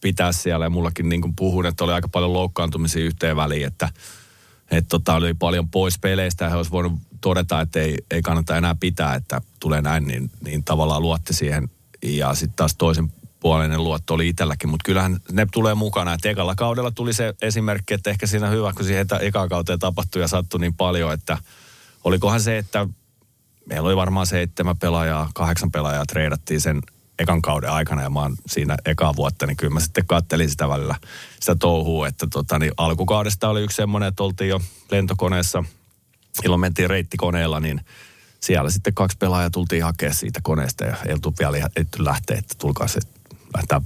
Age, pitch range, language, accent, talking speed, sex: 30-49, 80-100 Hz, Finnish, native, 180 wpm, male